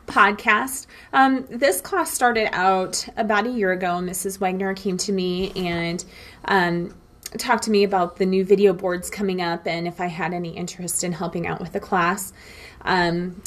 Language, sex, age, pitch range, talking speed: English, female, 30-49, 170-195 Hz, 180 wpm